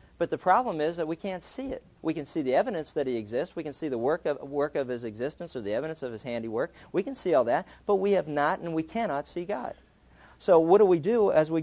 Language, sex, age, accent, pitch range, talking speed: English, male, 50-69, American, 135-185 Hz, 280 wpm